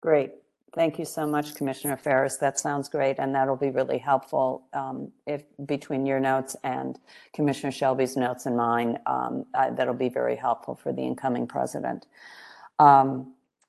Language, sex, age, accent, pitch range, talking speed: English, female, 50-69, American, 125-140 Hz, 160 wpm